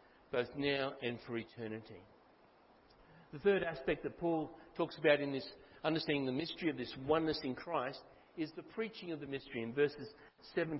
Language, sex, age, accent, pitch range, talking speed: English, male, 60-79, Australian, 135-175 Hz, 170 wpm